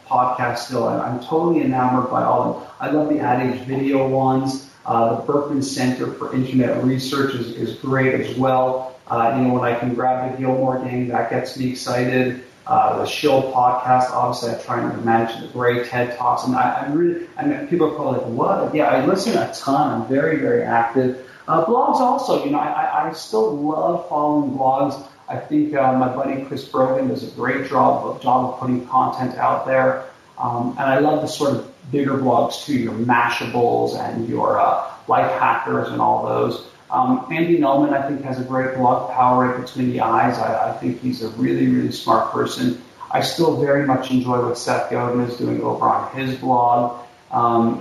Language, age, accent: English, 40-59, American